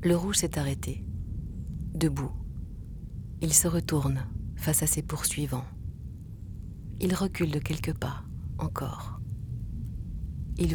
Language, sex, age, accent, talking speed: French, female, 40-59, French, 105 wpm